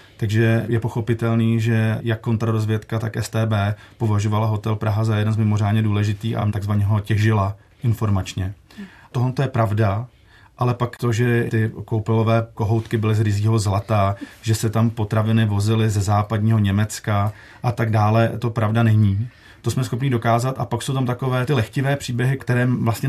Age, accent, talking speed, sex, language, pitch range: 30-49, native, 165 wpm, male, Czech, 110-120 Hz